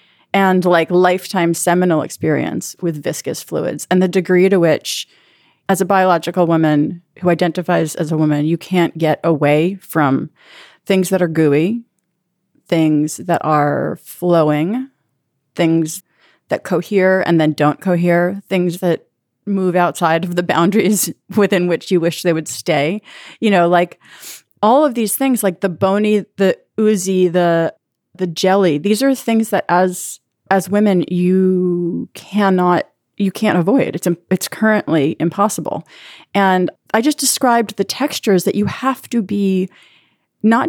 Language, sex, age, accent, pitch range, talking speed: English, female, 30-49, American, 170-205 Hz, 145 wpm